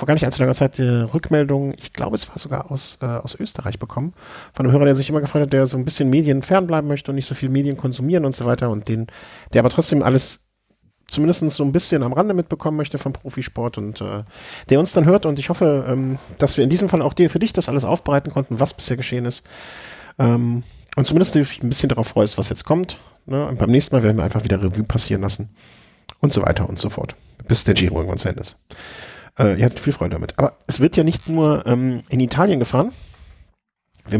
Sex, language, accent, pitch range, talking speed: male, German, German, 110-140 Hz, 240 wpm